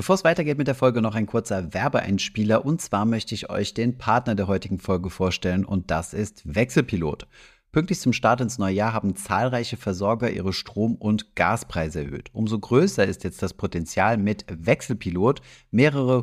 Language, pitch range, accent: German, 95-125 Hz, German